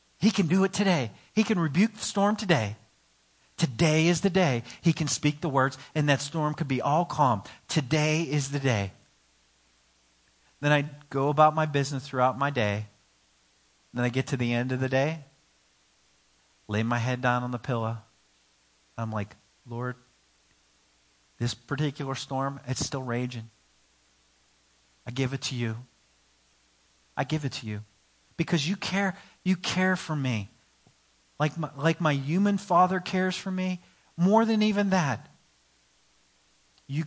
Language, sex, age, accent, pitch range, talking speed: English, male, 40-59, American, 100-155 Hz, 155 wpm